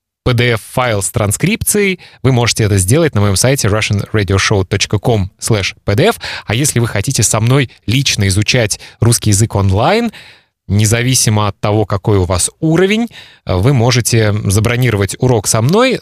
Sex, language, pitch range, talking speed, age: male, Russian, 105-130 Hz, 130 wpm, 20-39